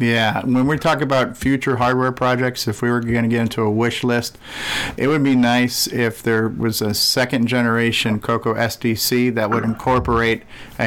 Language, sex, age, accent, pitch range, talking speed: English, male, 50-69, American, 105-120 Hz, 190 wpm